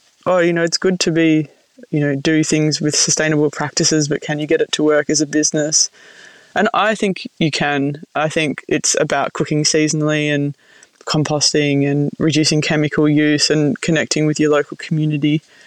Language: English